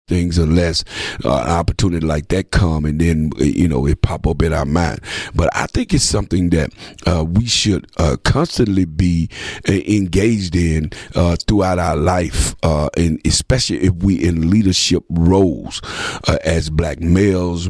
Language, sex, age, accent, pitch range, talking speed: English, male, 50-69, American, 80-95 Hz, 165 wpm